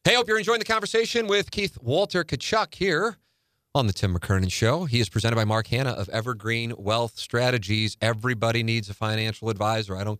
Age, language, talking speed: 30-49, English, 195 wpm